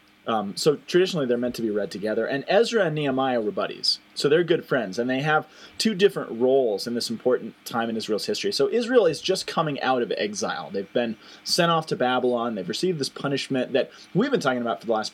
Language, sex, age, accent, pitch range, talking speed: English, male, 20-39, American, 120-175 Hz, 230 wpm